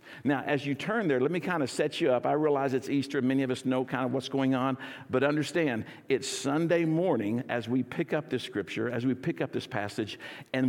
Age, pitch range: 50-69, 115-140 Hz